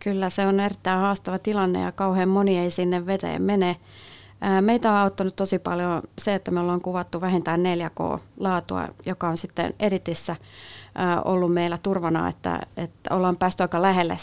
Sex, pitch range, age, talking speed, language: female, 170-190 Hz, 30-49, 160 wpm, Finnish